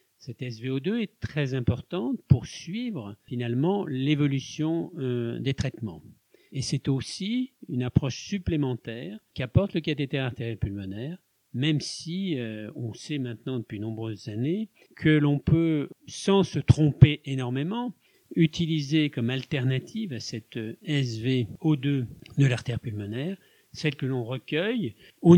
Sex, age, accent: male, 50-69, French